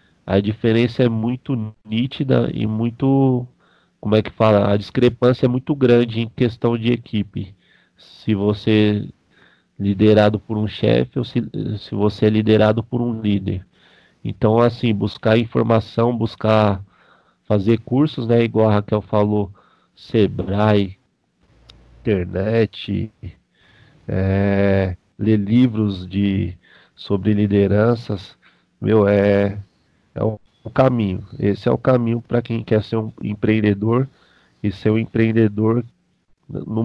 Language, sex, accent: Portuguese, male, Brazilian